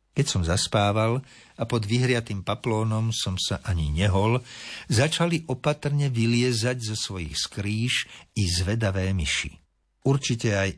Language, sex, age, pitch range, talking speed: Slovak, male, 60-79, 90-120 Hz, 120 wpm